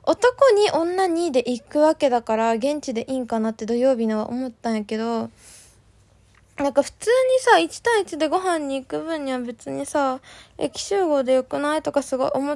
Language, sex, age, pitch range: Japanese, female, 20-39, 250-315 Hz